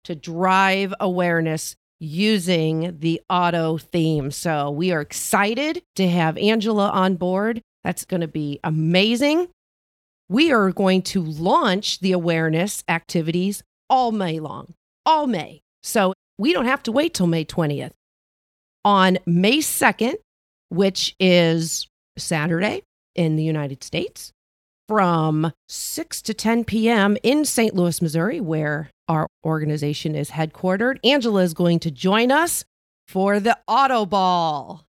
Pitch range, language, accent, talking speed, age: 165-215 Hz, English, American, 130 wpm, 40-59